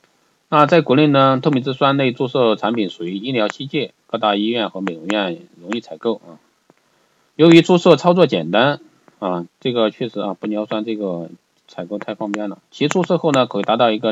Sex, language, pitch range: male, Chinese, 100-130 Hz